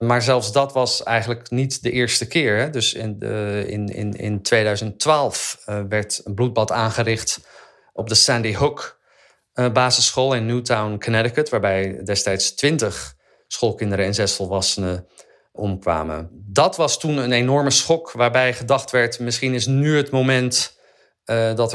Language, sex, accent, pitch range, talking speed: Dutch, male, Dutch, 110-130 Hz, 130 wpm